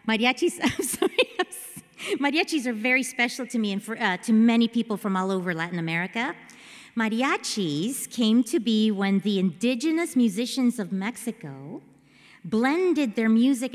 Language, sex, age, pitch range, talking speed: English, female, 40-59, 210-265 Hz, 145 wpm